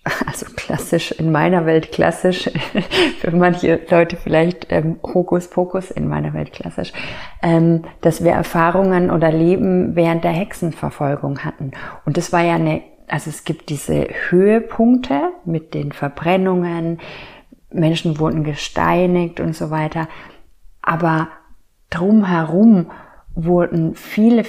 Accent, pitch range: German, 155-185 Hz